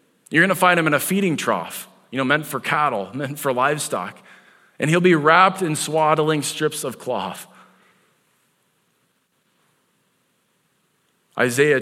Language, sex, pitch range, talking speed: English, male, 120-155 Hz, 130 wpm